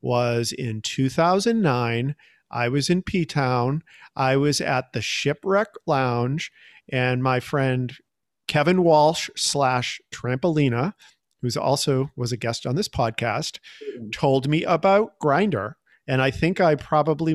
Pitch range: 125-160 Hz